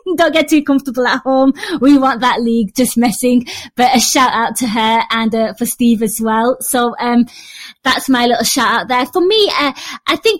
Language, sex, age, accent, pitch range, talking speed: English, female, 20-39, British, 225-270 Hz, 215 wpm